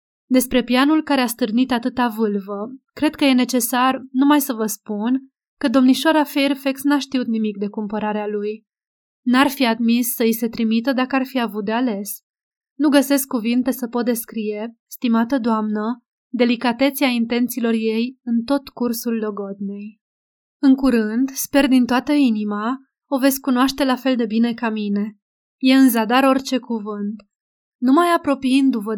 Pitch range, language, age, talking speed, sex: 220-265 Hz, Romanian, 20-39, 150 wpm, female